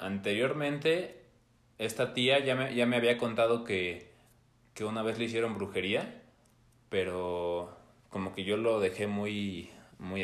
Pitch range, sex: 100-125 Hz, male